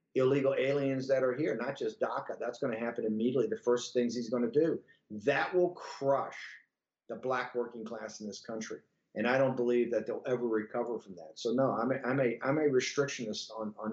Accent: American